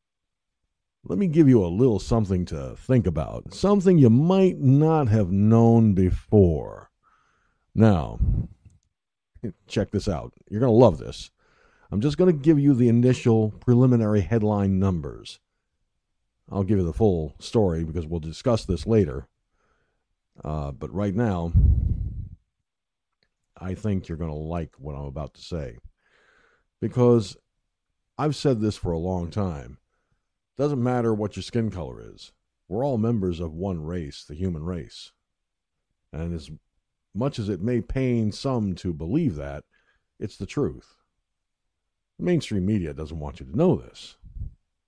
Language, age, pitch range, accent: English, 50-69, 85-120 Hz, American